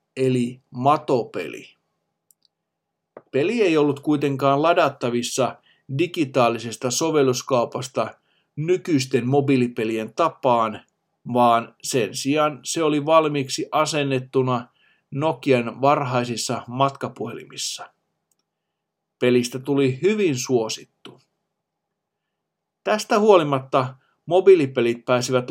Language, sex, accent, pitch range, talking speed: Finnish, male, native, 125-150 Hz, 70 wpm